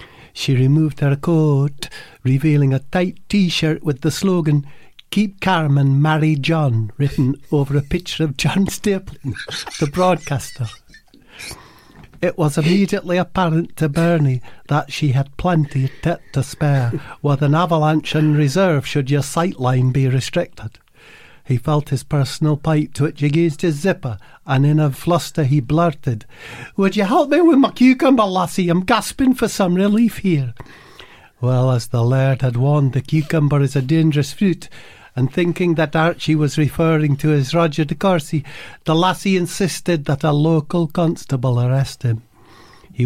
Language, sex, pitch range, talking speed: English, male, 135-170 Hz, 155 wpm